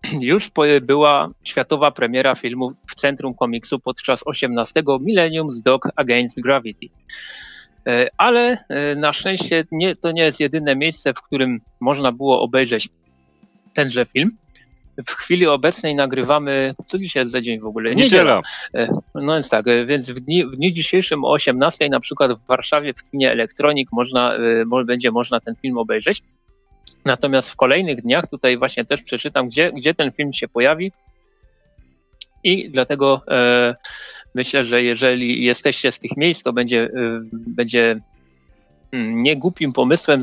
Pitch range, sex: 120-150 Hz, male